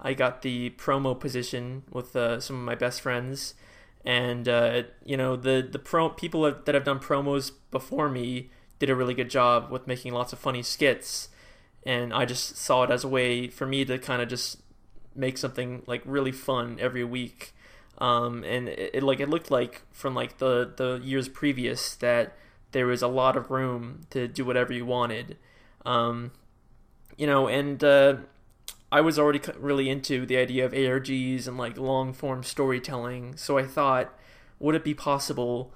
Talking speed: 185 wpm